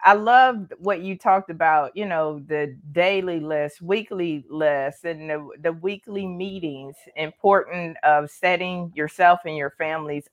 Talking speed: 145 wpm